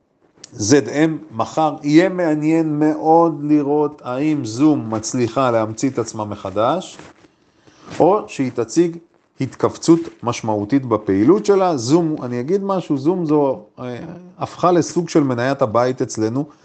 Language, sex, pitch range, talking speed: Hebrew, male, 130-170 Hz, 120 wpm